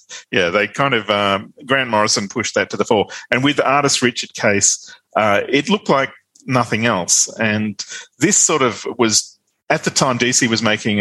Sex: male